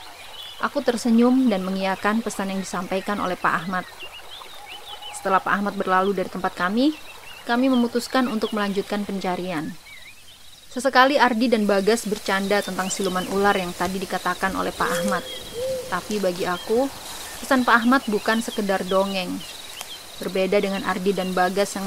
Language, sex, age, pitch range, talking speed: Indonesian, female, 20-39, 185-230 Hz, 140 wpm